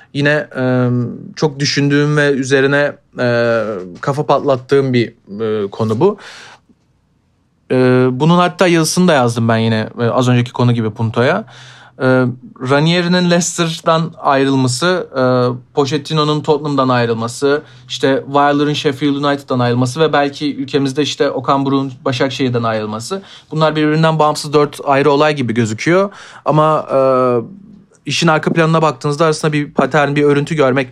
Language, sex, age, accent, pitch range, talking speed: Turkish, male, 40-59, native, 135-175 Hz, 115 wpm